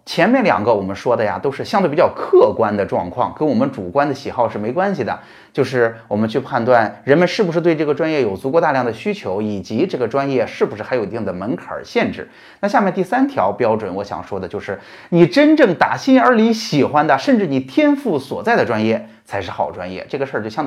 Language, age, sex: Chinese, 30-49, male